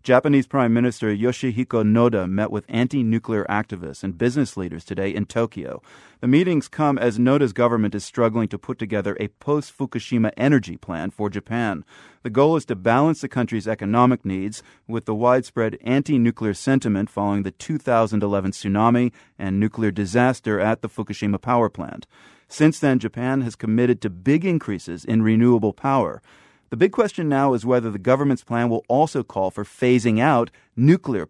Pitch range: 105-130 Hz